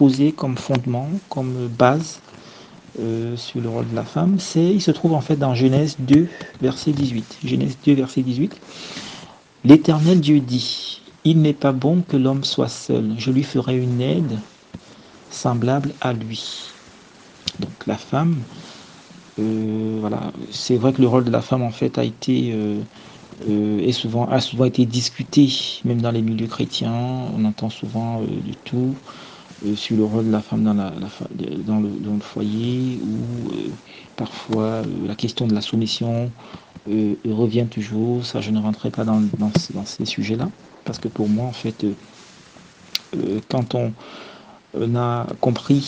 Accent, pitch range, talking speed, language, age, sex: French, 110-135 Hz, 175 wpm, French, 50-69, male